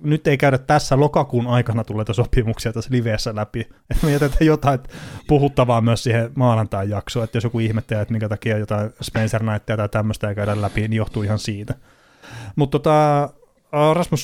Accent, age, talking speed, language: native, 30-49, 165 wpm, Finnish